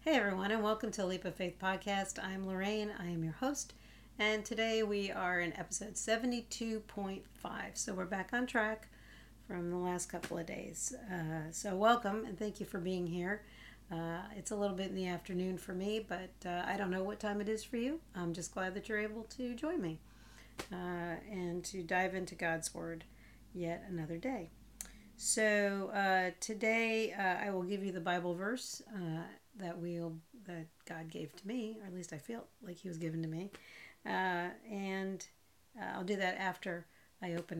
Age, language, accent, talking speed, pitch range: 50-69, English, American, 195 wpm, 170-205 Hz